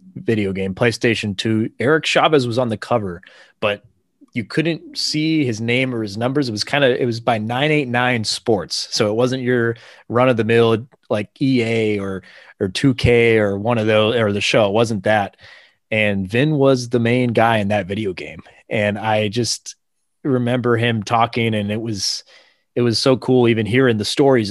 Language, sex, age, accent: English, male, 30-49, American